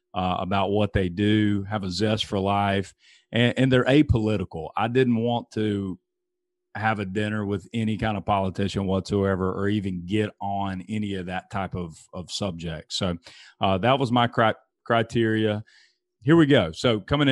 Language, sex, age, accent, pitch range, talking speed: English, male, 40-59, American, 100-120 Hz, 170 wpm